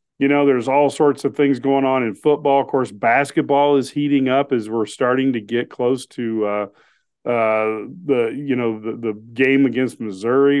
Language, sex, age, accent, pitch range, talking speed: English, male, 40-59, American, 110-130 Hz, 190 wpm